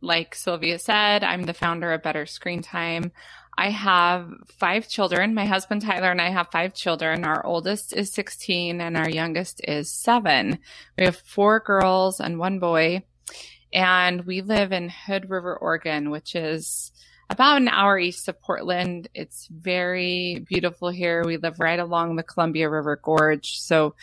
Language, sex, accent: Italian, female, American